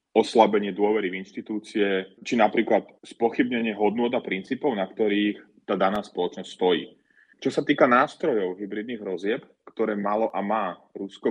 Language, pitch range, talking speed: Slovak, 95-115 Hz, 145 wpm